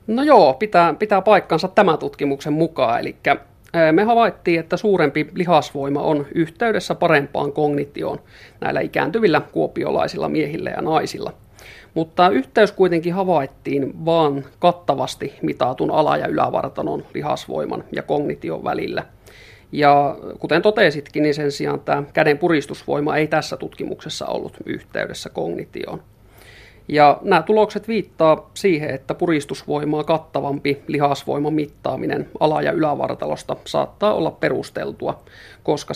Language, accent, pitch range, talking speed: Finnish, native, 140-170 Hz, 115 wpm